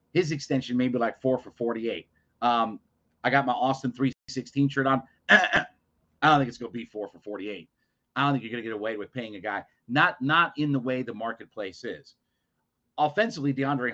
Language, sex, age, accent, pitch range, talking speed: English, male, 40-59, American, 115-145 Hz, 205 wpm